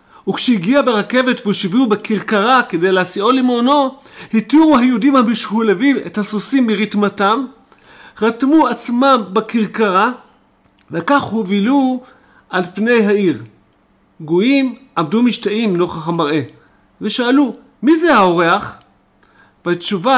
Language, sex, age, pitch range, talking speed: Hebrew, male, 40-59, 175-240 Hz, 90 wpm